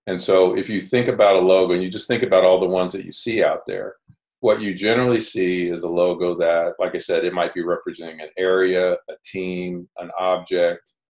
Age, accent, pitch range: 40-59, American, 90-110 Hz